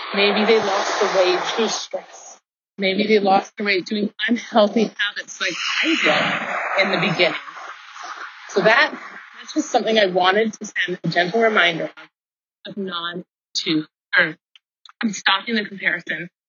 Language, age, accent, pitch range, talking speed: English, 30-49, American, 170-215 Hz, 150 wpm